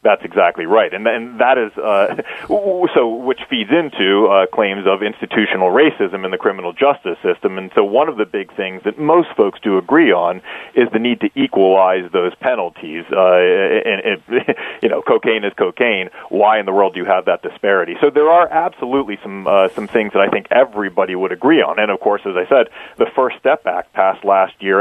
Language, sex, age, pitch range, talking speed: English, male, 40-59, 100-160 Hz, 215 wpm